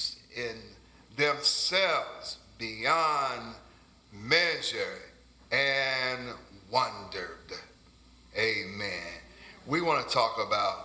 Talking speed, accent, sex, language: 60 wpm, American, male, English